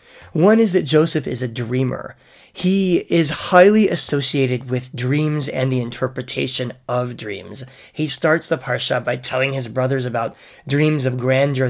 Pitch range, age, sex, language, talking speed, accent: 125-155 Hz, 30-49, male, English, 155 wpm, American